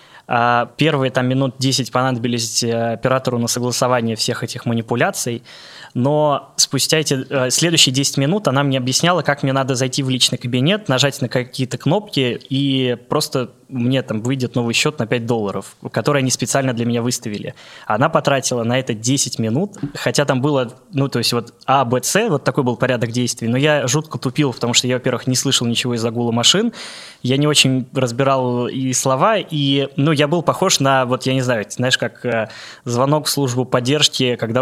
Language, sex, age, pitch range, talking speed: Russian, male, 20-39, 125-145 Hz, 180 wpm